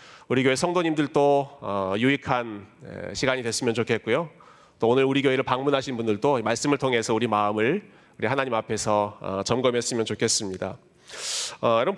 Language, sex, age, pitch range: Korean, male, 30-49, 115-150 Hz